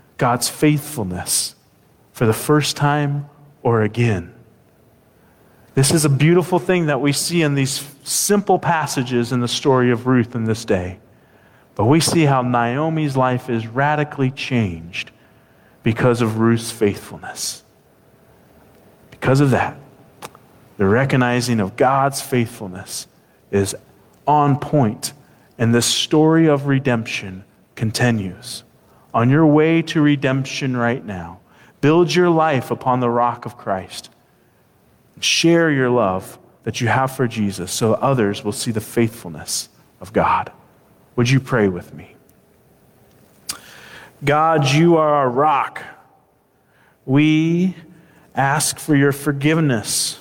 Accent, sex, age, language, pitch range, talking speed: American, male, 40-59, English, 115-150 Hz, 125 wpm